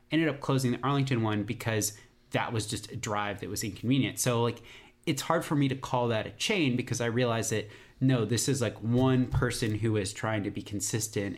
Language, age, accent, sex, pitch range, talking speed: English, 30-49, American, male, 105-130 Hz, 220 wpm